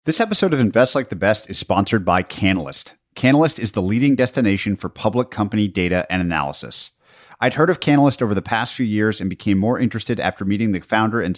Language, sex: English, male